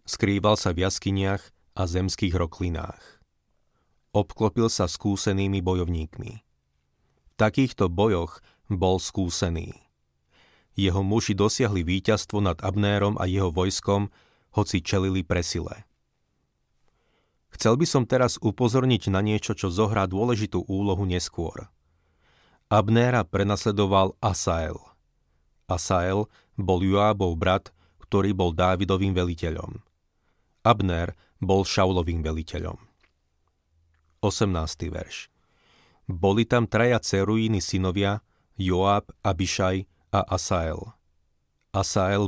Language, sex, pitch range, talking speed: Slovak, male, 90-105 Hz, 95 wpm